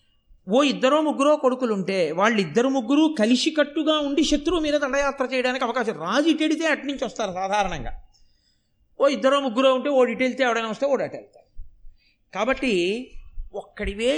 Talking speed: 125 wpm